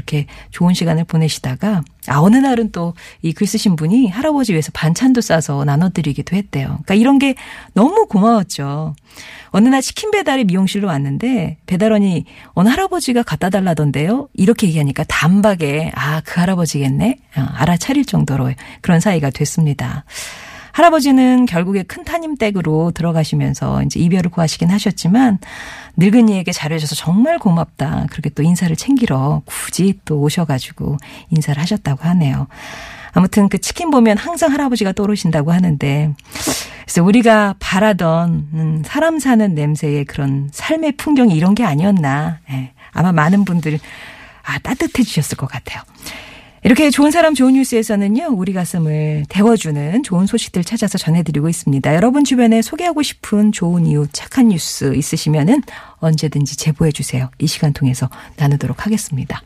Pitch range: 150-220 Hz